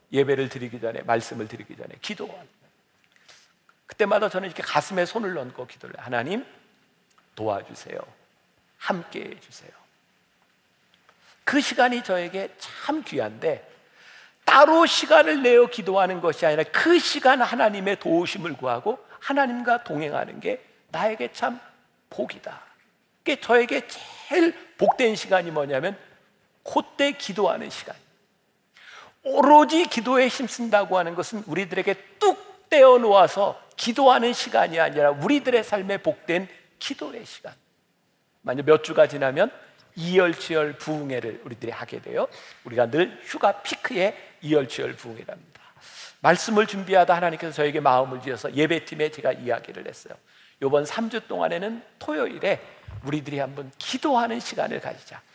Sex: male